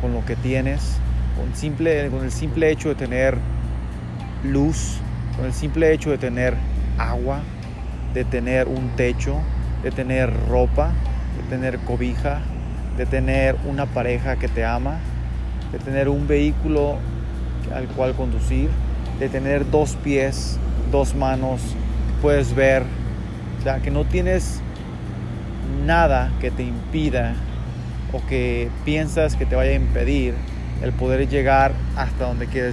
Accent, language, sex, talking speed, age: Mexican, Spanish, male, 135 wpm, 30-49